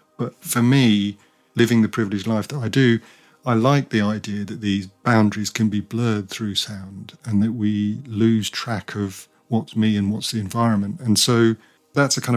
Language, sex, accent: English, male, British